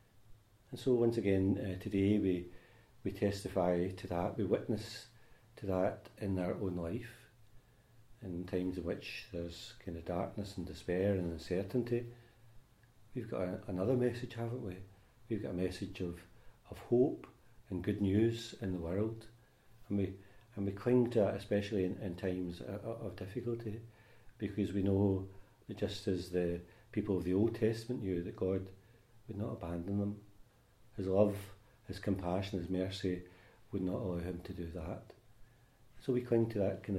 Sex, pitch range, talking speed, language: male, 95-115 Hz, 165 wpm, English